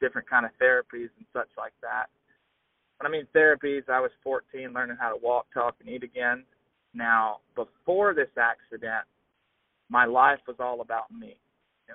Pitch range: 120-155 Hz